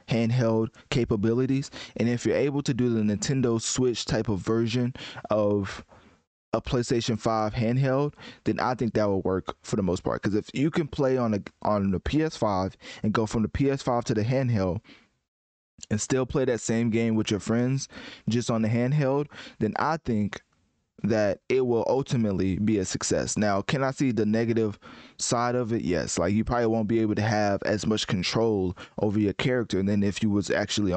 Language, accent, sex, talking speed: English, American, male, 190 wpm